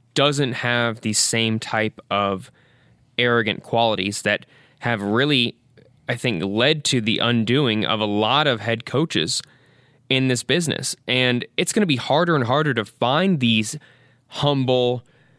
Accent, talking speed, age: American, 150 wpm, 20-39